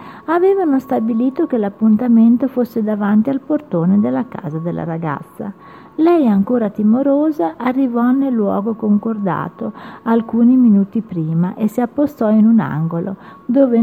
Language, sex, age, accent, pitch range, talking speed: Italian, female, 50-69, native, 190-250 Hz, 125 wpm